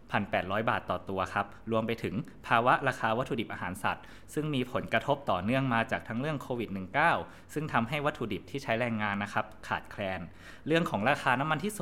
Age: 20-39